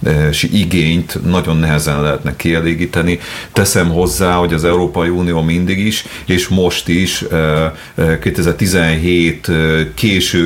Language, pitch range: Hungarian, 75-90 Hz